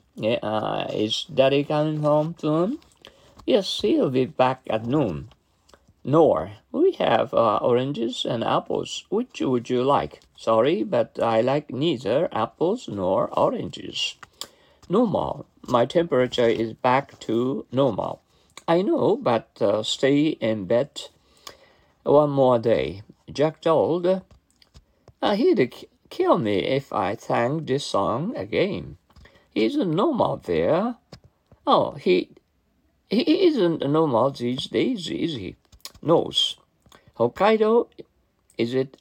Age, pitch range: 50-69, 120-185 Hz